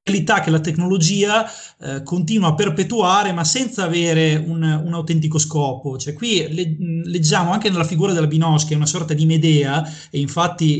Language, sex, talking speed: Italian, male, 170 wpm